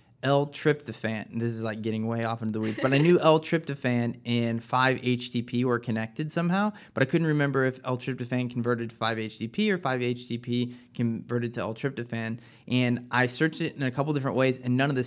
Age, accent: 20-39, American